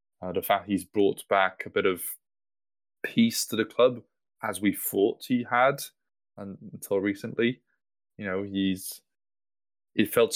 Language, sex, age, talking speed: English, male, 20-39, 150 wpm